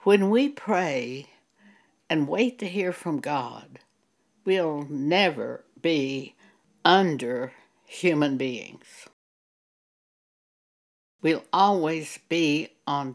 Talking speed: 85 wpm